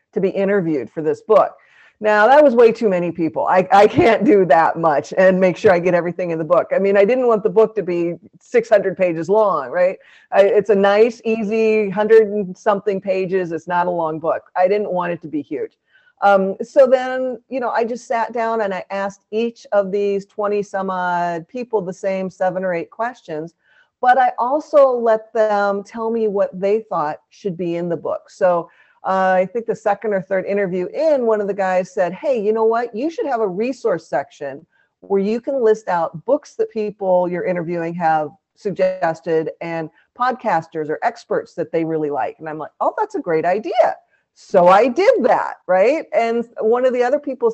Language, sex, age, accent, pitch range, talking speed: English, female, 40-59, American, 180-230 Hz, 210 wpm